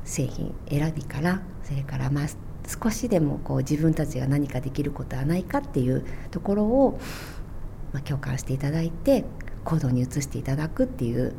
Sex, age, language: female, 40-59, Japanese